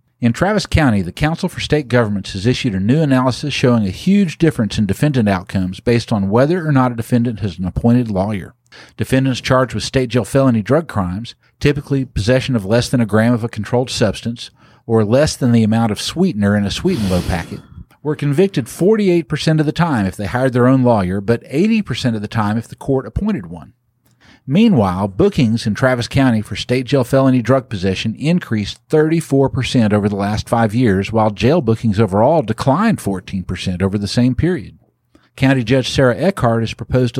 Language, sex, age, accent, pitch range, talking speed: English, male, 50-69, American, 110-135 Hz, 190 wpm